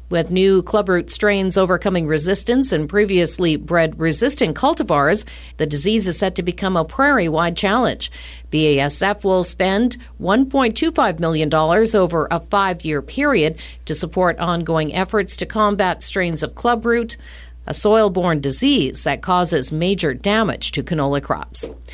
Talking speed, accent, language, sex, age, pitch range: 140 wpm, American, English, female, 50-69, 155-215 Hz